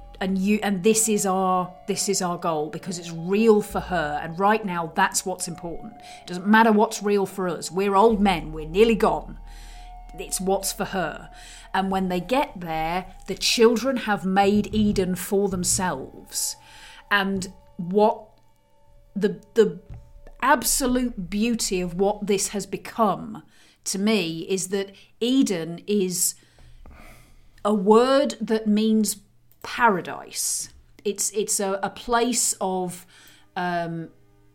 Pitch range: 175-210 Hz